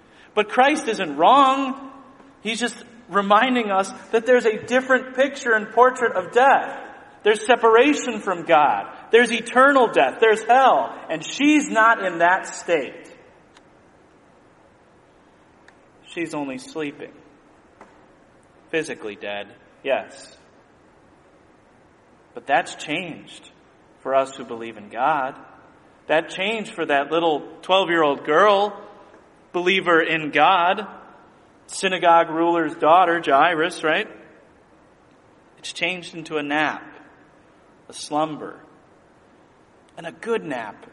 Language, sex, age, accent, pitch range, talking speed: English, male, 30-49, American, 160-240 Hz, 105 wpm